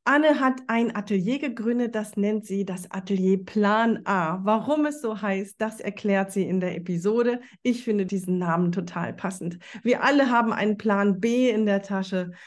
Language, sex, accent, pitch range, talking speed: German, female, German, 205-265 Hz, 180 wpm